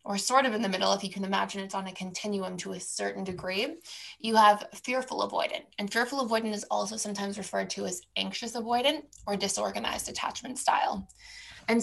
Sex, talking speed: female, 195 wpm